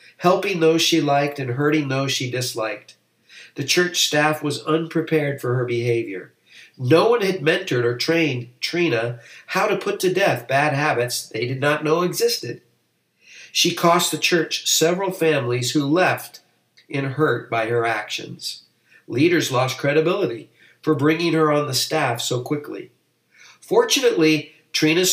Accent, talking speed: American, 150 wpm